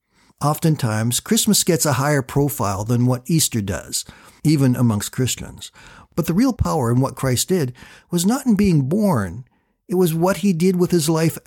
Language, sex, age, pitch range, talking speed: English, male, 50-69, 120-170 Hz, 180 wpm